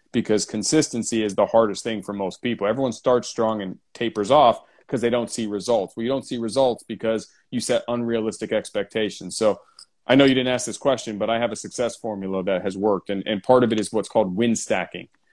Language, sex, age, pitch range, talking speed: English, male, 30-49, 105-125 Hz, 225 wpm